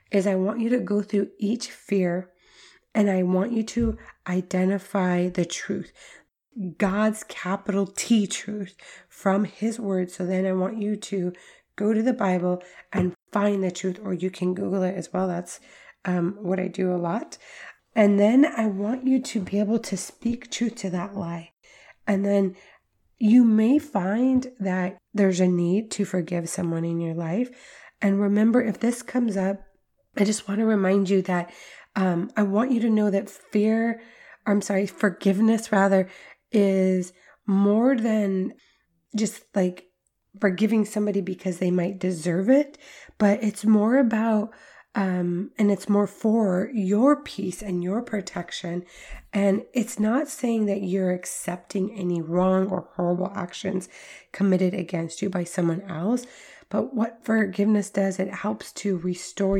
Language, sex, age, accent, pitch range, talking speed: English, female, 20-39, American, 185-215 Hz, 160 wpm